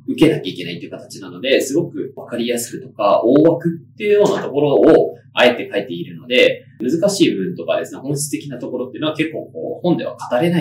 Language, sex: Japanese, male